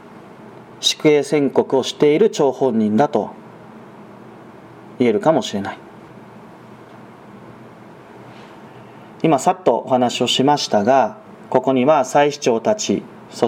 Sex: male